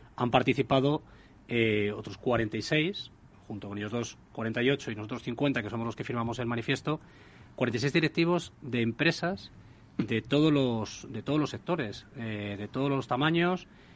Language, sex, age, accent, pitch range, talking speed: Spanish, male, 40-59, Spanish, 115-150 Hz, 145 wpm